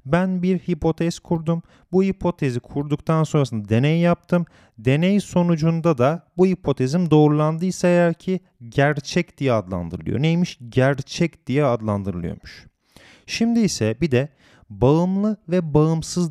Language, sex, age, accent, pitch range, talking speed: Turkish, male, 30-49, native, 125-180 Hz, 120 wpm